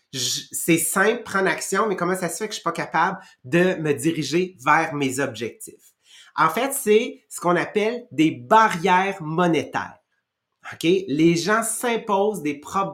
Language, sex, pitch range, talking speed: English, male, 160-210 Hz, 165 wpm